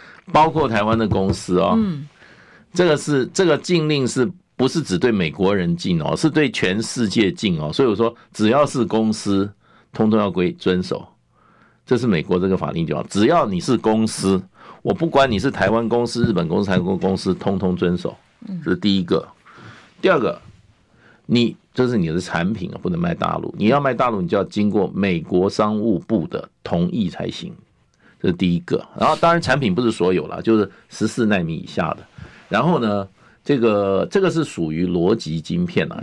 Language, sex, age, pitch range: Chinese, male, 50-69, 95-155 Hz